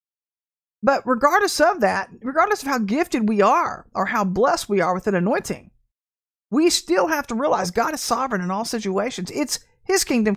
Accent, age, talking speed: American, 50-69, 185 wpm